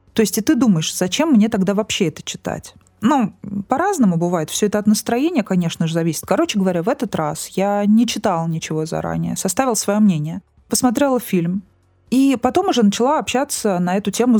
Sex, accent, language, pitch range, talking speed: female, native, Russian, 170-240 Hz, 185 wpm